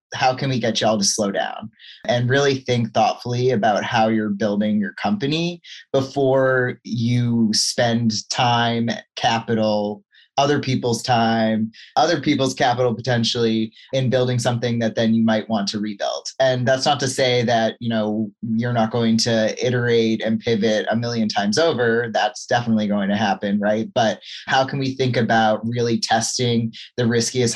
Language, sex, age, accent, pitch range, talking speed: English, male, 20-39, American, 110-130 Hz, 165 wpm